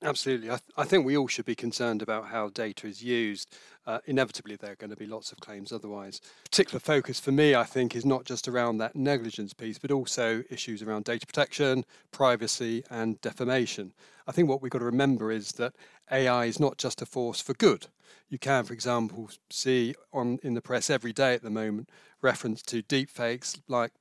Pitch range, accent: 110-130 Hz, British